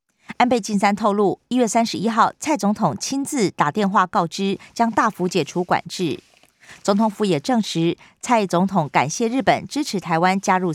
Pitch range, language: 180-245 Hz, Chinese